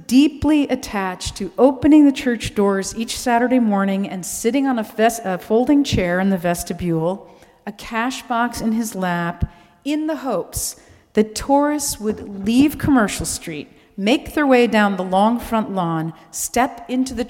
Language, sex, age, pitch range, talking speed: English, female, 40-59, 185-255 Hz, 160 wpm